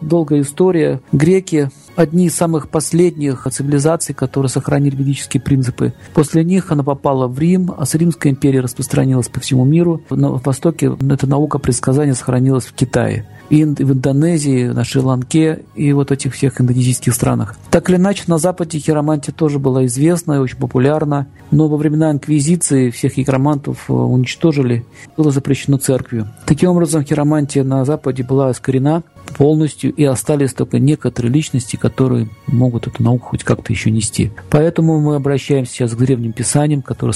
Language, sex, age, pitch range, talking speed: Russian, male, 50-69, 125-150 Hz, 160 wpm